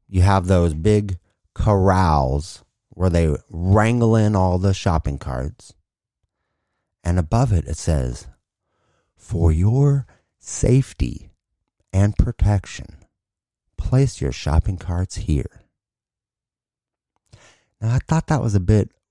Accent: American